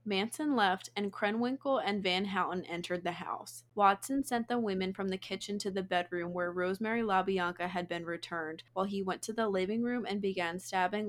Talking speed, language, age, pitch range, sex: 195 wpm, English, 20-39, 180-210 Hz, female